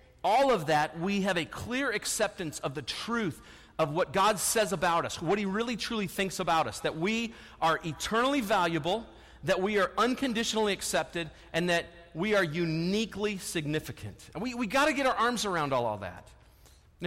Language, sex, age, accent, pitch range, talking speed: English, male, 40-59, American, 155-210 Hz, 185 wpm